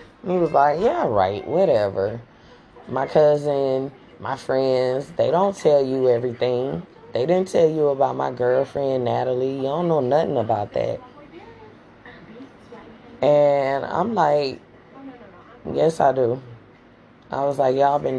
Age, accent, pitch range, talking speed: 20-39, American, 125-145 Hz, 130 wpm